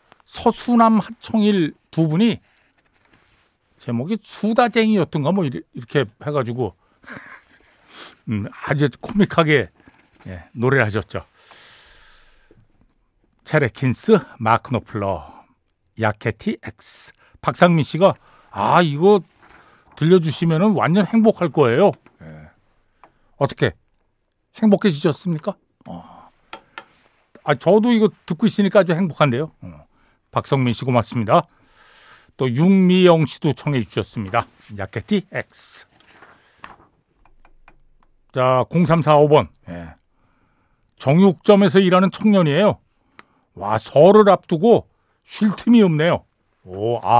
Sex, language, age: male, Korean, 60-79